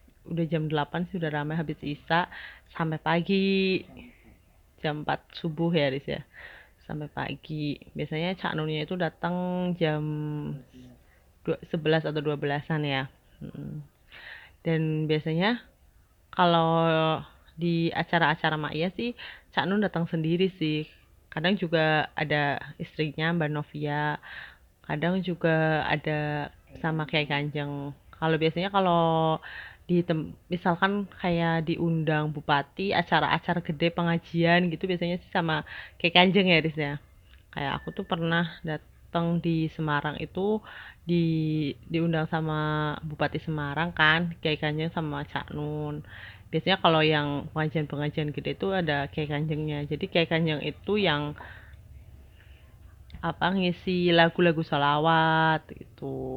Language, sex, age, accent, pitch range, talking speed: Indonesian, female, 30-49, native, 150-170 Hz, 115 wpm